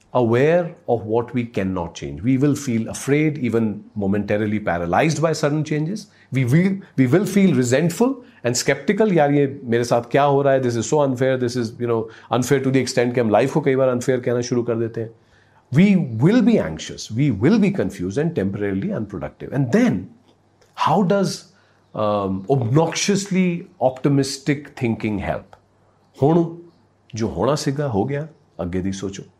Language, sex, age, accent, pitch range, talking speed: Hindi, male, 40-59, native, 100-145 Hz, 175 wpm